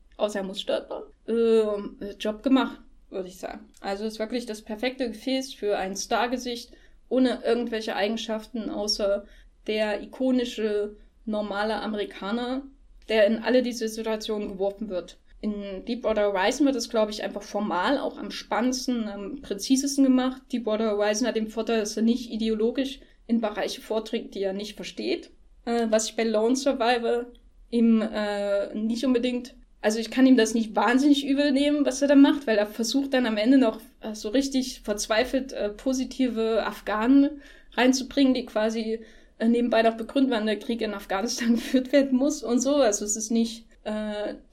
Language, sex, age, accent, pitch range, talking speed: German, female, 10-29, German, 215-260 Hz, 165 wpm